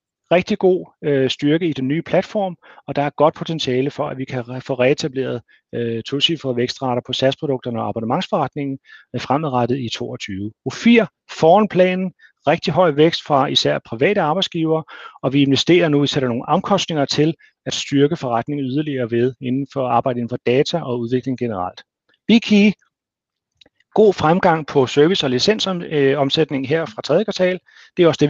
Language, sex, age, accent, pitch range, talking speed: Danish, male, 40-59, native, 125-175 Hz, 175 wpm